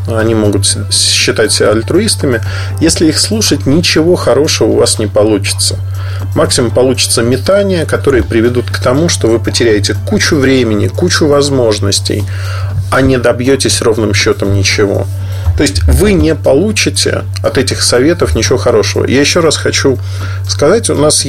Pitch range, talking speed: 95-115 Hz, 140 wpm